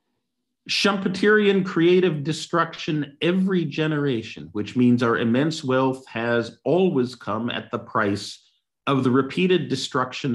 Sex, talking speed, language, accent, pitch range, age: male, 115 wpm, English, American, 115-155 Hz, 50-69